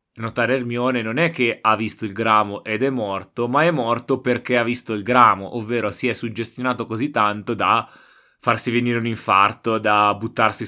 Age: 20-39